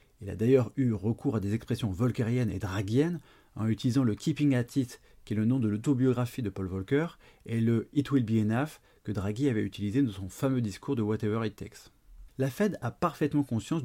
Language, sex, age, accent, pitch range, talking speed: French, male, 30-49, French, 105-140 Hz, 240 wpm